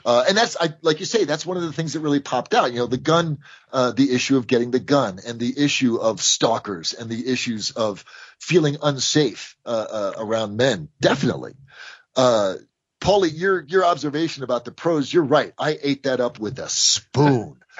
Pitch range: 135-190 Hz